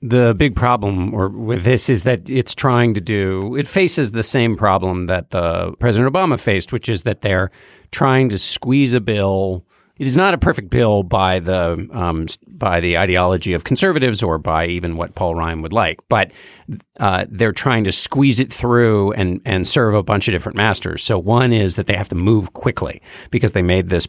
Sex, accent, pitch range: male, American, 90-115 Hz